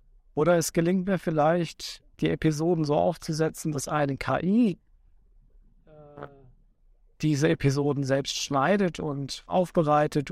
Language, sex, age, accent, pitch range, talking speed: German, male, 50-69, German, 135-160 Hz, 105 wpm